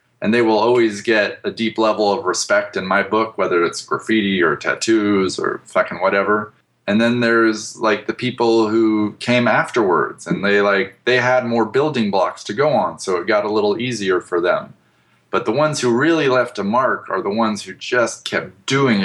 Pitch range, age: 105-125 Hz, 20-39